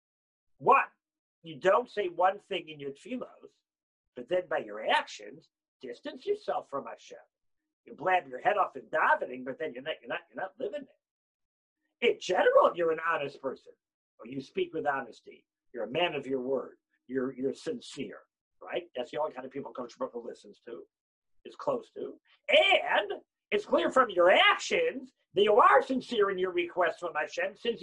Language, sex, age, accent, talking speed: English, male, 50-69, American, 190 wpm